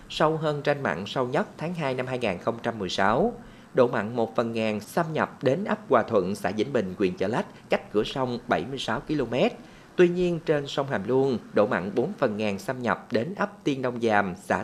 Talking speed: 210 wpm